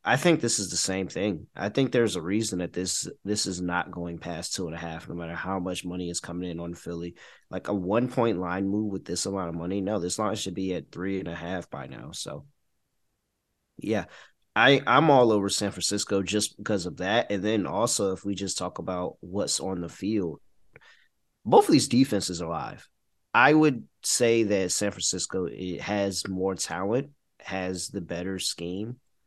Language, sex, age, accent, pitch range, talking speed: English, male, 30-49, American, 90-115 Hz, 205 wpm